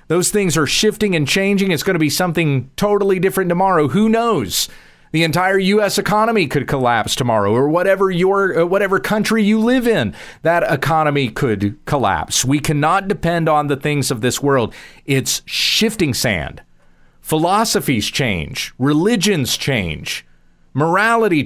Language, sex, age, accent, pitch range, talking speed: English, male, 40-59, American, 115-180 Hz, 150 wpm